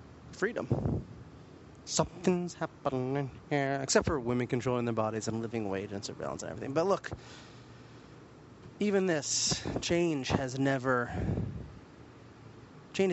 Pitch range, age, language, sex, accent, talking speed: 120-155 Hz, 30-49, English, male, American, 115 wpm